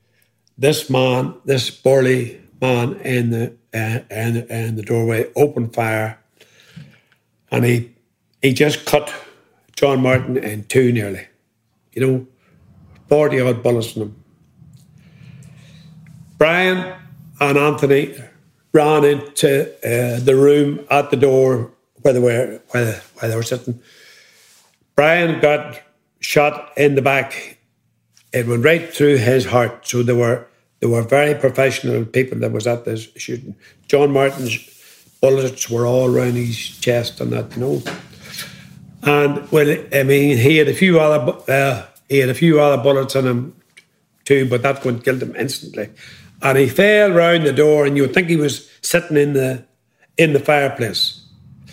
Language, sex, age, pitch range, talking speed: English, male, 60-79, 120-150 Hz, 150 wpm